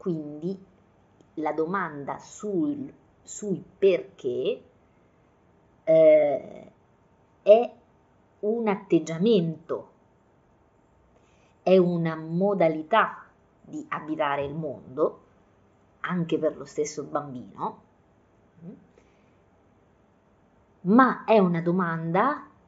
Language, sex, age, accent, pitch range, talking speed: Italian, female, 30-49, native, 155-215 Hz, 65 wpm